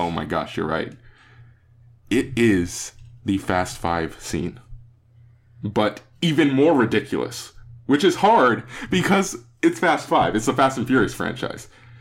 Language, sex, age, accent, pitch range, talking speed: English, male, 20-39, American, 115-145 Hz, 140 wpm